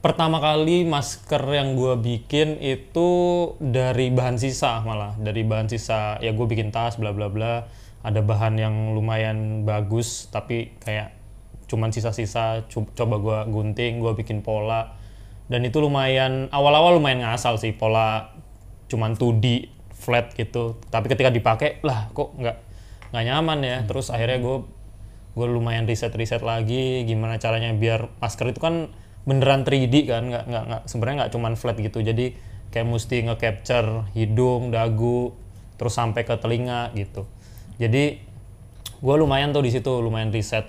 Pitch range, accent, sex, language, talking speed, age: 110-125 Hz, native, male, Indonesian, 140 wpm, 20-39